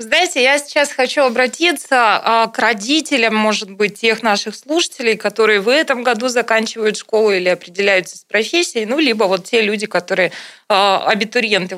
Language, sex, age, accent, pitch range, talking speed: Russian, female, 20-39, native, 210-275 Hz, 150 wpm